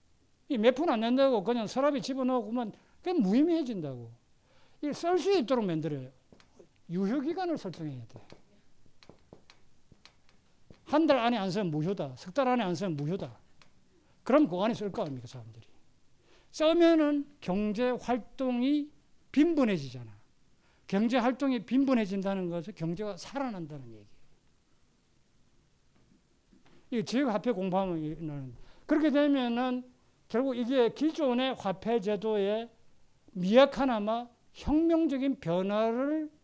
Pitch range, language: 180-255 Hz, Korean